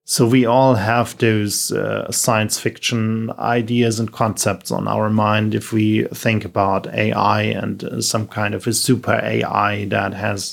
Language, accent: German, German